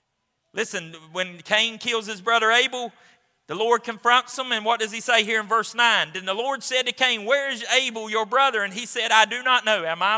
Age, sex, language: 40-59, male, English